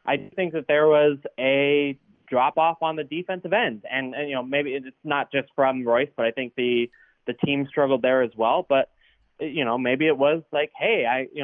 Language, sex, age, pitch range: English, male, 20-39, 135-165 Hz